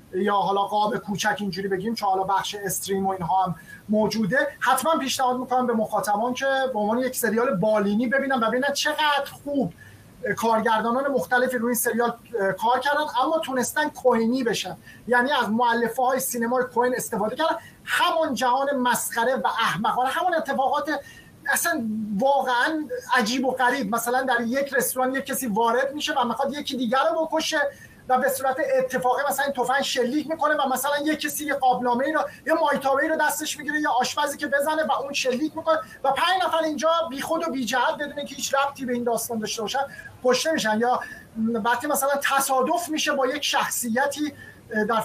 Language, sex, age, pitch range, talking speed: Persian, male, 30-49, 235-285 Hz, 175 wpm